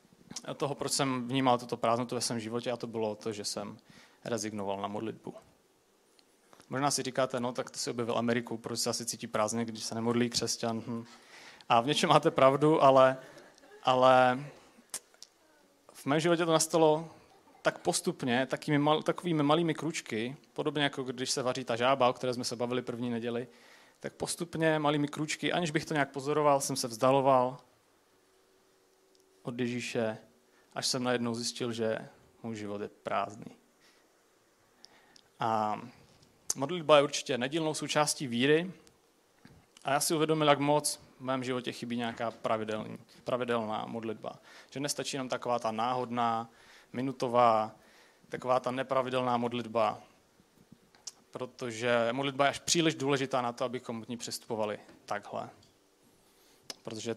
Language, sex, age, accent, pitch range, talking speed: Czech, male, 30-49, native, 115-145 Hz, 145 wpm